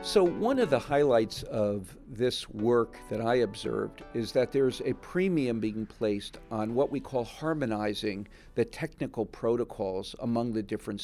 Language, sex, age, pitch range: English, male, 50-69, 105-130 Hz